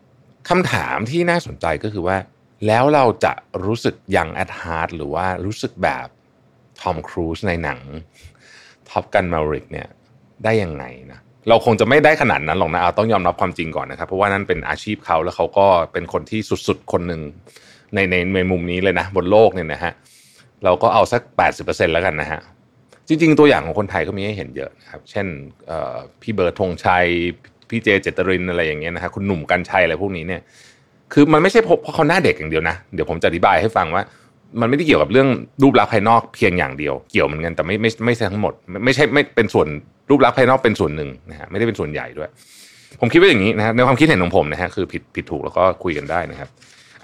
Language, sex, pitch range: Thai, male, 85-110 Hz